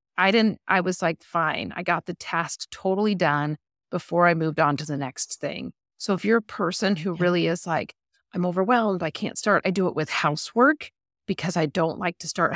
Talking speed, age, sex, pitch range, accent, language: 215 wpm, 40-59, female, 165-215 Hz, American, English